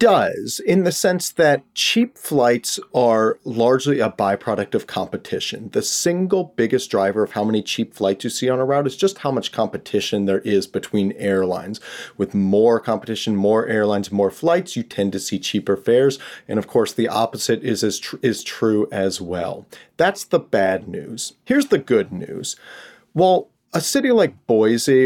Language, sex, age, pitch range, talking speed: English, male, 40-59, 105-145 Hz, 175 wpm